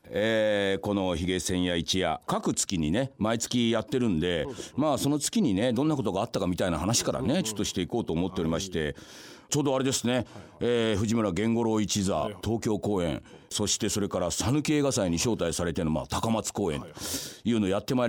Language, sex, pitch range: Japanese, male, 95-130 Hz